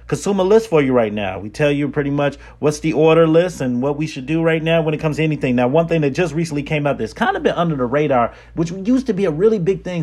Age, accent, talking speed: 30-49, American, 300 wpm